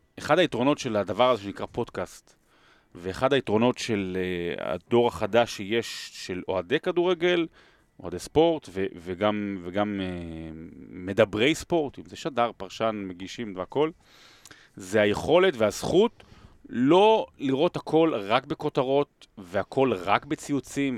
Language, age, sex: Hebrew, 30-49, male